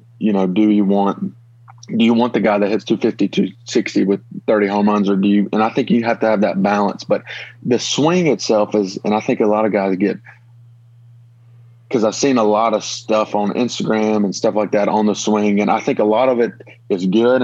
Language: English